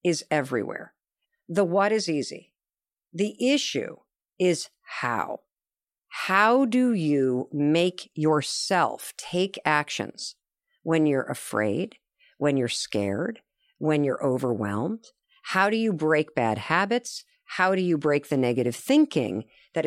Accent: American